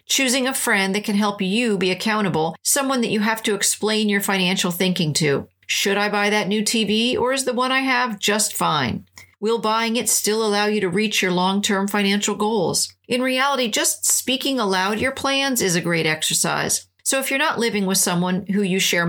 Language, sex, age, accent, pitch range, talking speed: English, female, 50-69, American, 180-230 Hz, 210 wpm